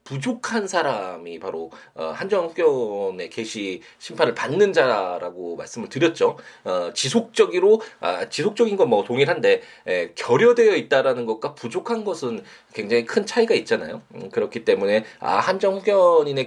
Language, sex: Korean, male